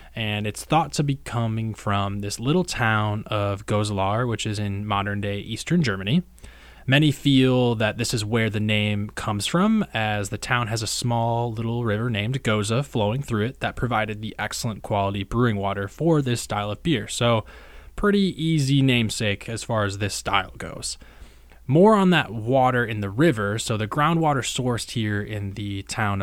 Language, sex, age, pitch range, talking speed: English, male, 20-39, 100-125 Hz, 180 wpm